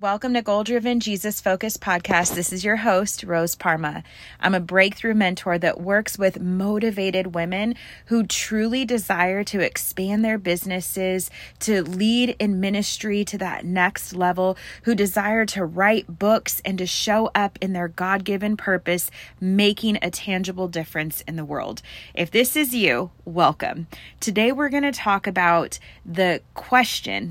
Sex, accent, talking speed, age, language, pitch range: female, American, 155 wpm, 30-49, English, 175-210 Hz